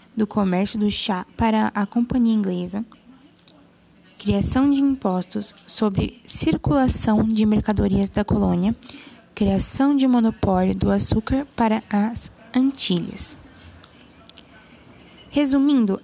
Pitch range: 200-245 Hz